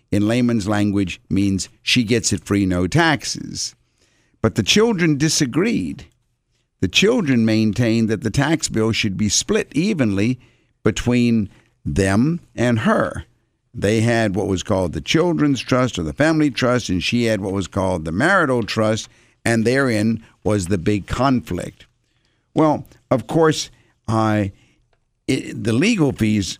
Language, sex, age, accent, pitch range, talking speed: English, male, 60-79, American, 105-130 Hz, 145 wpm